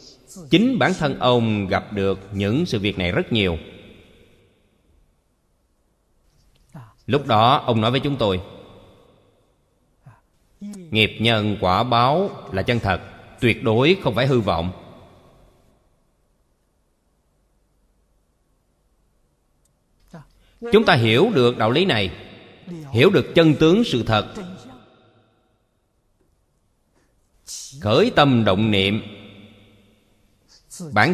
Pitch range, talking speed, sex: 95-125 Hz, 95 wpm, male